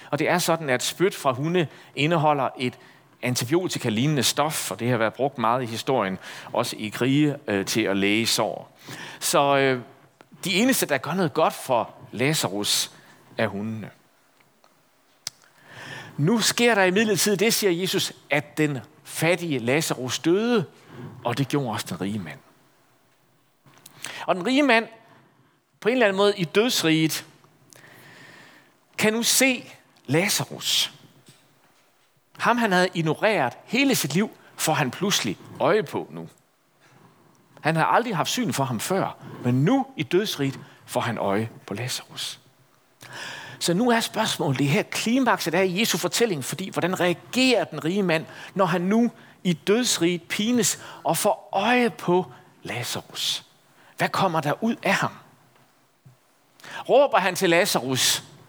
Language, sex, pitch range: Danish, male, 135-200 Hz